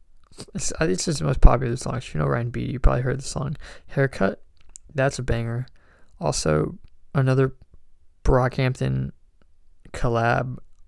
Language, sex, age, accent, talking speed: English, male, 20-39, American, 145 wpm